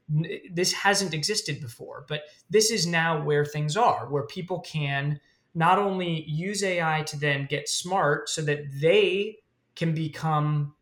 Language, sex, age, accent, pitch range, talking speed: English, male, 20-39, American, 140-170 Hz, 150 wpm